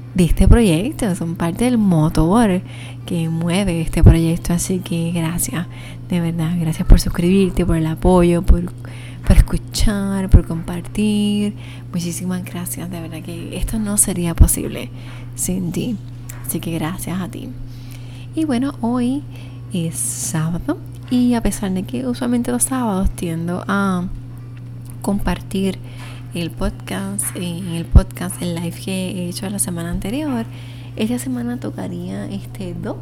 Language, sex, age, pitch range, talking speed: Spanish, female, 20-39, 120-180 Hz, 140 wpm